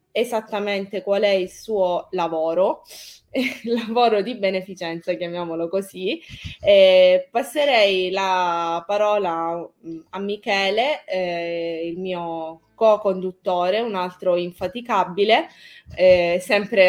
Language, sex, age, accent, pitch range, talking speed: Italian, female, 20-39, native, 180-215 Hz, 100 wpm